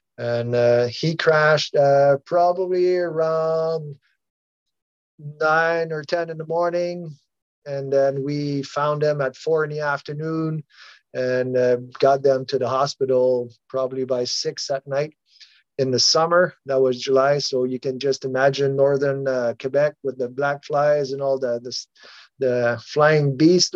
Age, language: 30-49, English